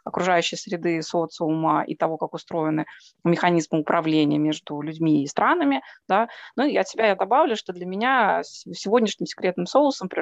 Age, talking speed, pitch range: 20-39, 160 wpm, 170-245 Hz